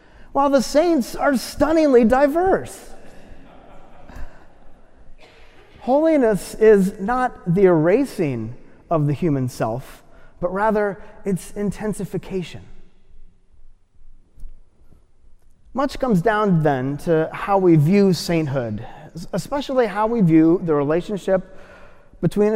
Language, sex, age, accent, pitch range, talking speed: English, male, 30-49, American, 155-220 Hz, 95 wpm